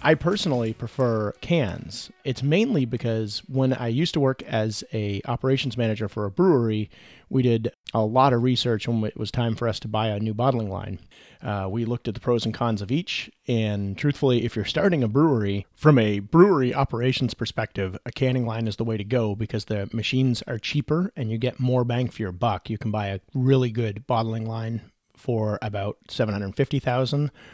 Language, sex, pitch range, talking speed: English, male, 110-130 Hz, 200 wpm